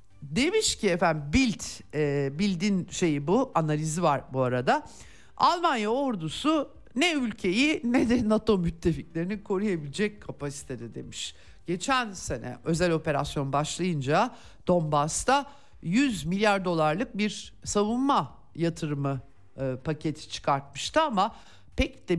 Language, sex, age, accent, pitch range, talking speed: Turkish, male, 50-69, native, 150-215 Hz, 105 wpm